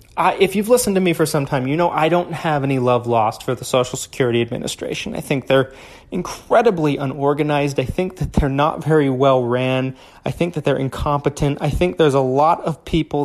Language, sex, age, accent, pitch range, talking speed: English, male, 30-49, American, 130-165 Hz, 215 wpm